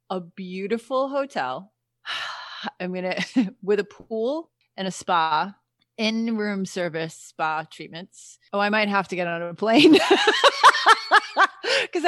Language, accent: English, American